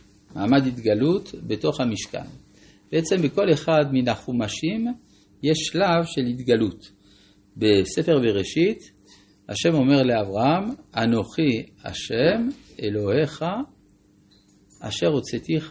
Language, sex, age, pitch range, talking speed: Hebrew, male, 50-69, 100-145 Hz, 80 wpm